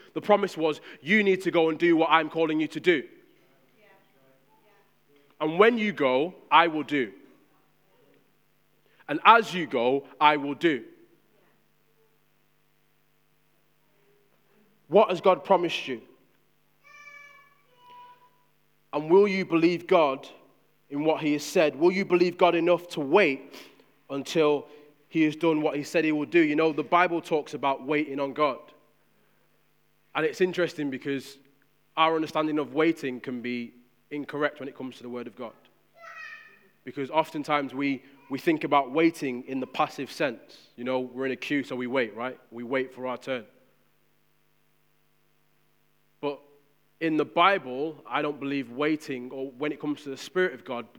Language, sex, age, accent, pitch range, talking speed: English, male, 20-39, British, 140-175 Hz, 155 wpm